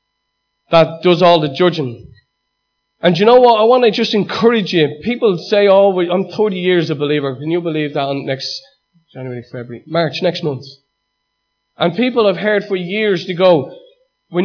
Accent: Irish